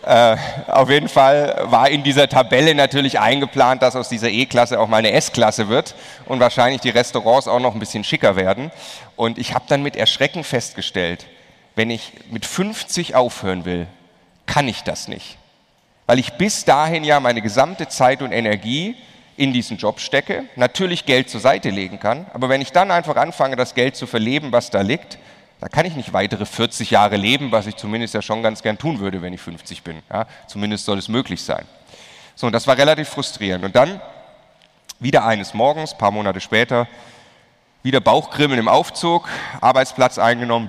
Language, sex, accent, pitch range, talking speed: German, male, German, 110-135 Hz, 185 wpm